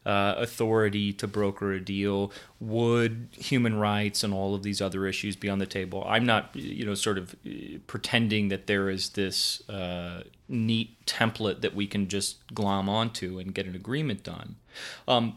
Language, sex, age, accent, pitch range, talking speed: English, male, 30-49, American, 95-110 Hz, 175 wpm